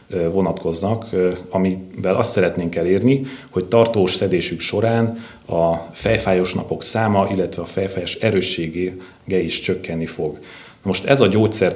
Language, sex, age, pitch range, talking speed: Hungarian, male, 30-49, 90-105 Hz, 125 wpm